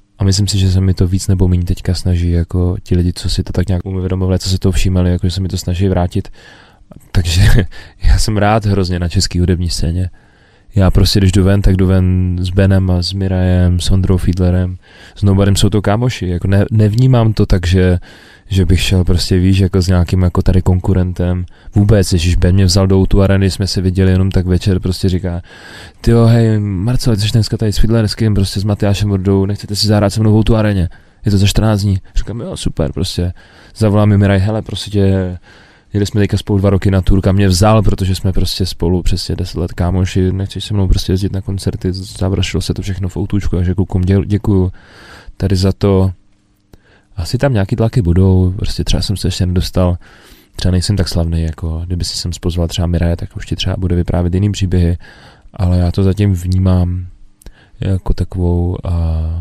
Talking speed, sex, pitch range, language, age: 200 wpm, male, 90-100 Hz, Czech, 20-39